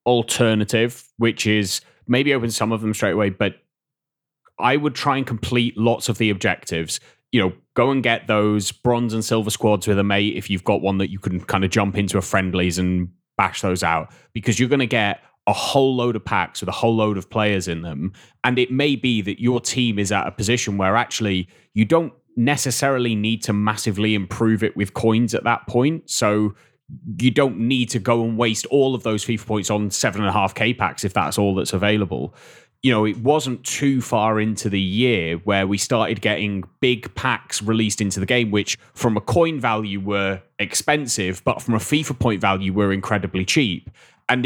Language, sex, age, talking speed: English, male, 20-39, 205 wpm